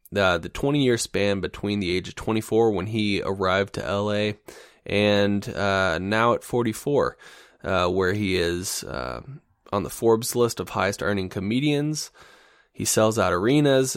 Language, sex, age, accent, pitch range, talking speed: English, male, 20-39, American, 100-120 Hz, 150 wpm